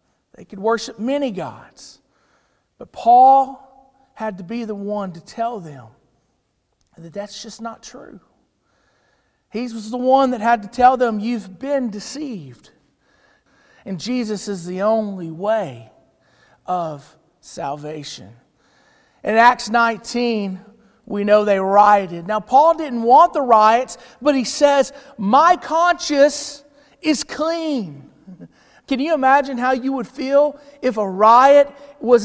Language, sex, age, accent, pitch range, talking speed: English, male, 40-59, American, 205-270 Hz, 130 wpm